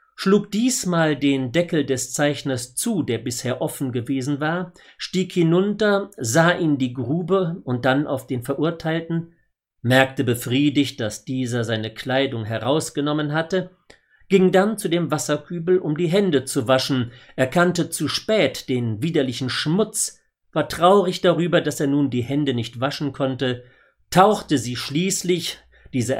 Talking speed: 140 wpm